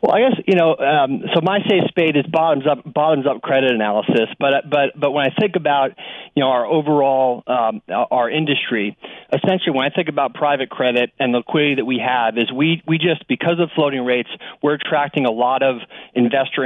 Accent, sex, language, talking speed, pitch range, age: American, male, English, 215 wpm, 125-150 Hz, 40-59